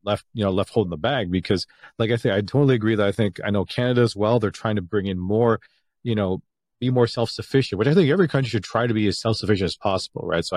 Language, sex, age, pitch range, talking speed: English, male, 30-49, 100-120 Hz, 285 wpm